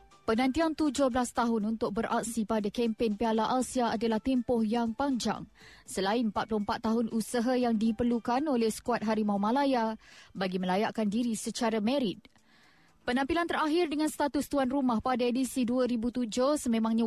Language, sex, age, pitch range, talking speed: Malay, female, 20-39, 225-265 Hz, 135 wpm